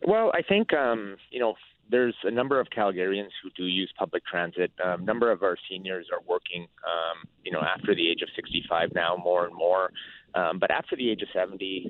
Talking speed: 215 wpm